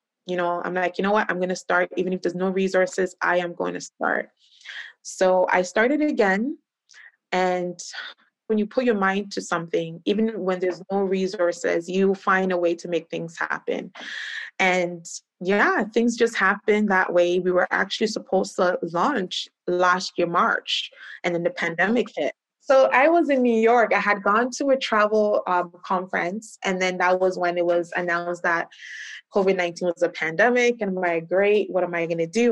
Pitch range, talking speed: 175-210 Hz, 190 wpm